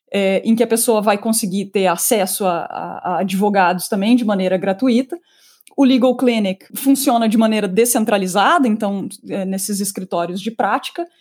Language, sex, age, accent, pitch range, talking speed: Portuguese, female, 20-39, Brazilian, 200-245 Hz, 150 wpm